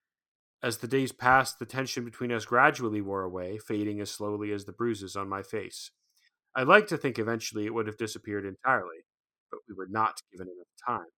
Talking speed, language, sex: 200 wpm, English, male